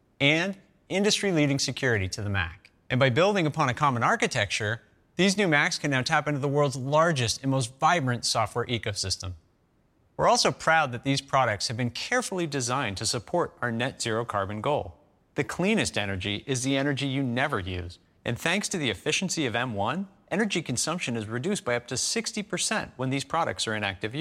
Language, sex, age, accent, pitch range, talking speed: English, male, 30-49, American, 110-150 Hz, 185 wpm